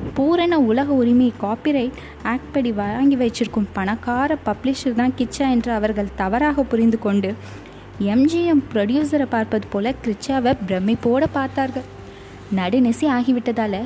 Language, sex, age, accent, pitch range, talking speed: Tamil, female, 20-39, native, 205-265 Hz, 115 wpm